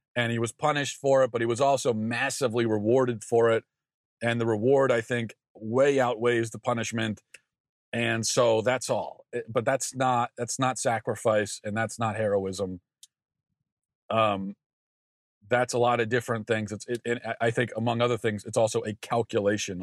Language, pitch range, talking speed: English, 105-125 Hz, 170 wpm